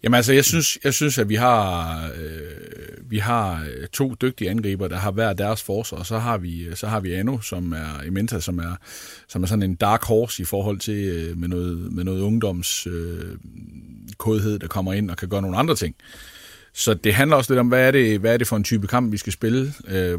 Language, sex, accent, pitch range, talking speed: Danish, male, native, 90-115 Hz, 225 wpm